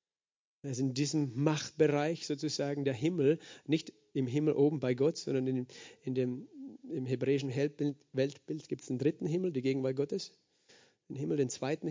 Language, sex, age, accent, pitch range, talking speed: German, male, 40-59, German, 140-165 Hz, 160 wpm